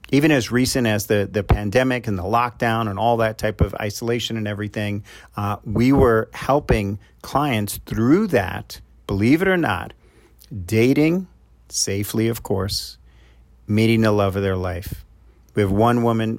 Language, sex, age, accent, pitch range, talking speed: English, male, 40-59, American, 100-120 Hz, 155 wpm